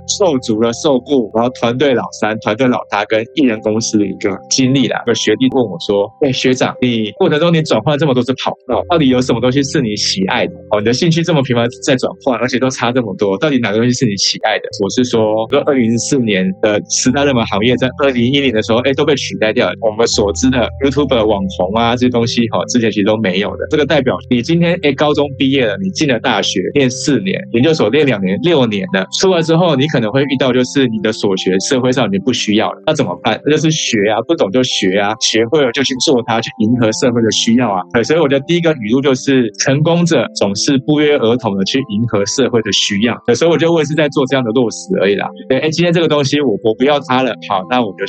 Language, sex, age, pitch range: Chinese, male, 20-39, 110-140 Hz